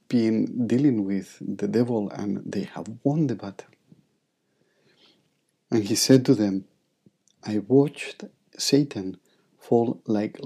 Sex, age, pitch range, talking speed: male, 50-69, 105-130 Hz, 120 wpm